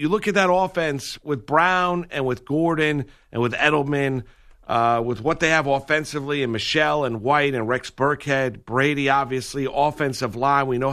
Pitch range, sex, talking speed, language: 125-145 Hz, male, 175 wpm, English